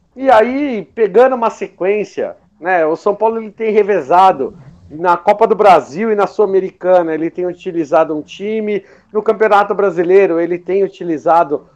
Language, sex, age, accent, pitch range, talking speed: Portuguese, male, 50-69, Brazilian, 175-210 Hz, 155 wpm